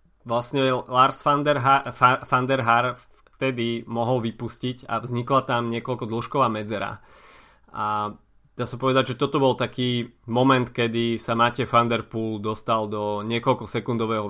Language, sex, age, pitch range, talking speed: Slovak, male, 20-39, 110-130 Hz, 145 wpm